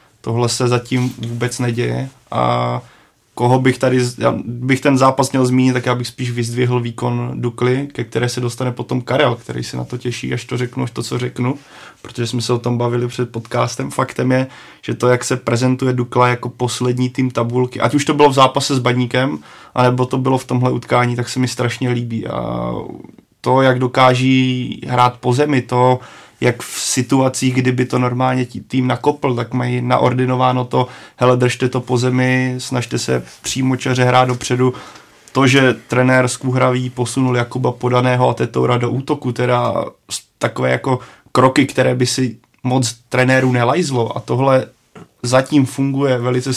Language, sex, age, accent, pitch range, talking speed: Czech, male, 20-39, native, 120-130 Hz, 175 wpm